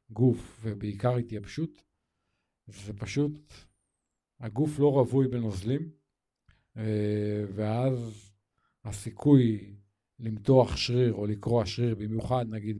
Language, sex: Hebrew, male